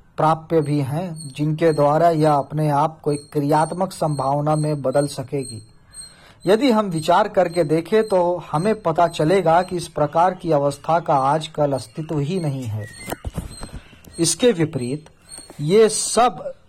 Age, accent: 40-59, native